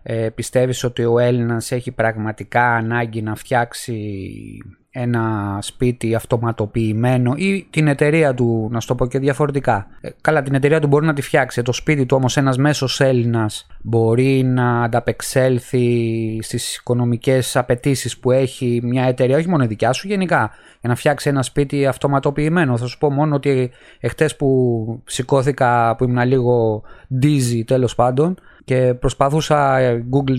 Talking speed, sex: 155 wpm, male